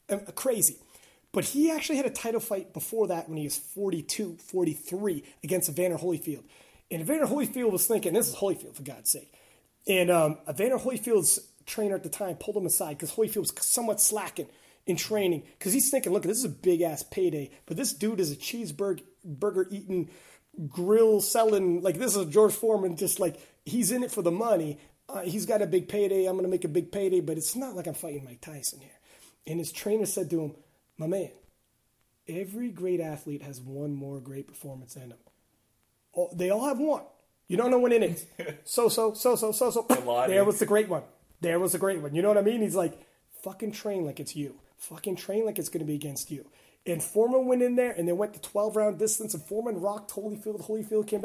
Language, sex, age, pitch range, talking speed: English, male, 30-49, 165-215 Hz, 215 wpm